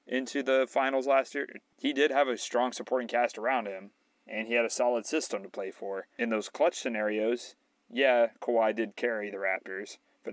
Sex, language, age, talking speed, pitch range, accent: male, English, 30-49, 200 wpm, 110-135 Hz, American